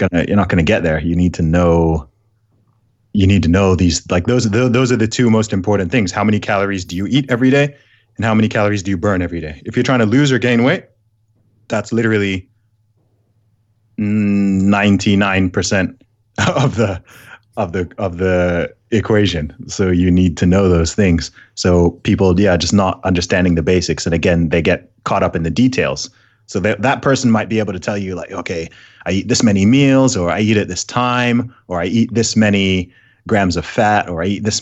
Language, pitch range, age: English, 90-110 Hz, 20-39